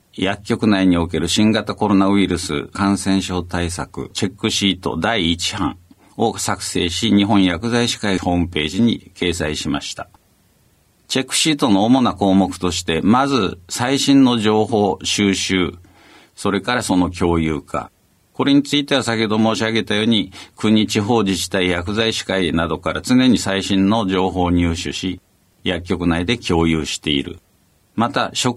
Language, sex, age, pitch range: Japanese, male, 60-79, 90-110 Hz